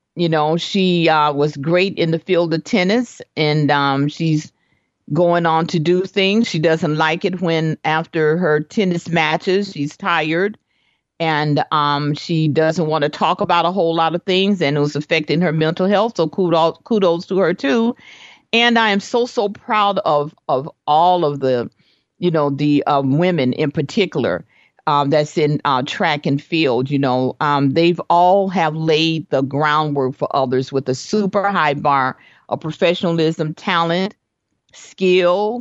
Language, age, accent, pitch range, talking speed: English, 50-69, American, 145-190 Hz, 170 wpm